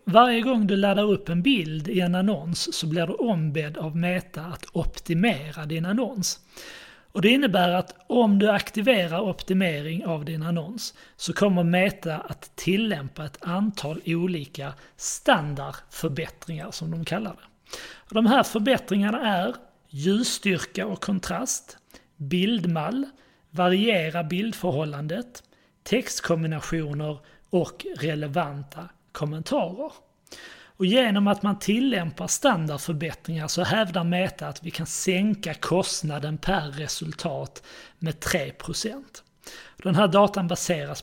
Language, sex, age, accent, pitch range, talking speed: Swedish, male, 30-49, native, 160-205 Hz, 120 wpm